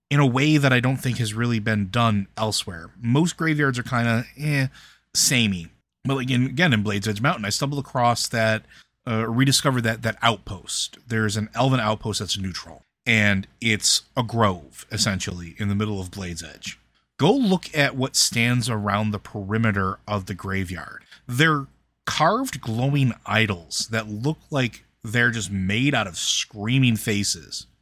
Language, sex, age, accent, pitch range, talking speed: English, male, 30-49, American, 105-135 Hz, 165 wpm